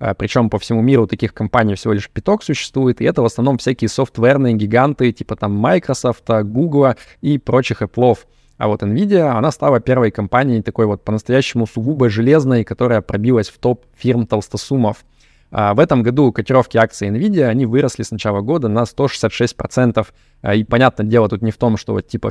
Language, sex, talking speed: Russian, male, 175 wpm